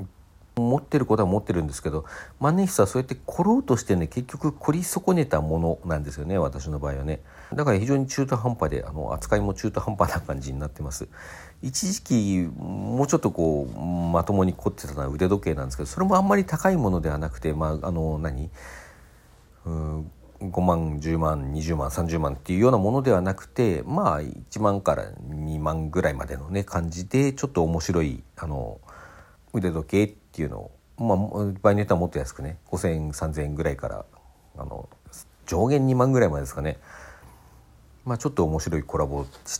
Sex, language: male, Japanese